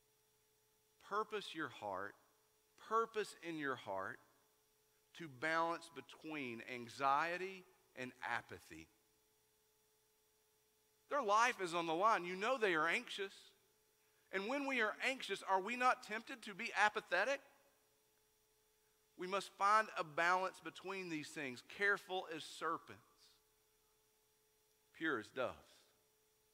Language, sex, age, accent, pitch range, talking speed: English, male, 50-69, American, 125-200 Hz, 115 wpm